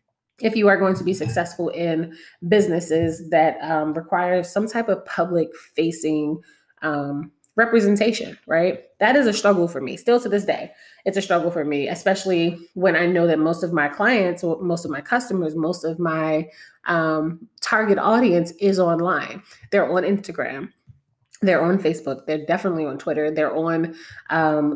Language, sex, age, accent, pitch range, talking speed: English, female, 20-39, American, 155-195 Hz, 170 wpm